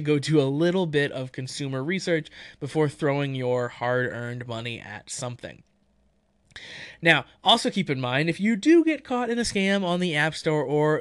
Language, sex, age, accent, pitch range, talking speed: English, male, 20-39, American, 135-175 Hz, 180 wpm